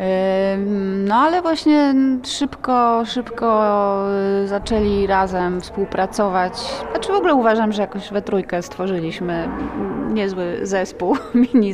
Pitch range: 180-230 Hz